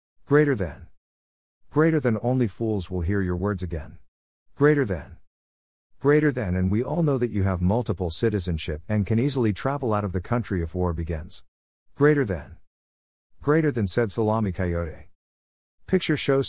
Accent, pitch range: American, 85-115 Hz